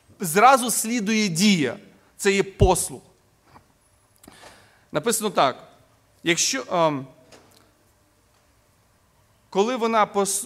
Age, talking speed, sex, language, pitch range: 30-49, 75 wpm, male, Ukrainian, 185-235 Hz